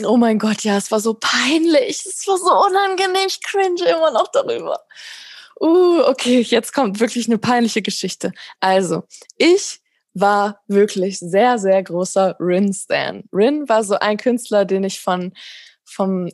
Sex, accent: female, German